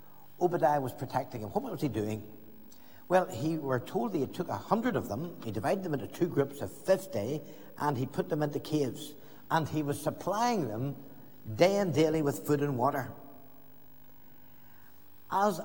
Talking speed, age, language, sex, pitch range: 175 wpm, 60-79, English, male, 125-160 Hz